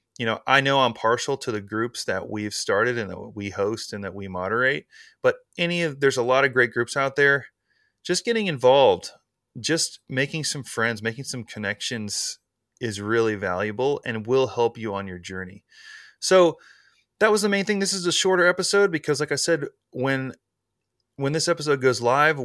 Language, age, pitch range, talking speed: English, 30-49, 110-145 Hz, 190 wpm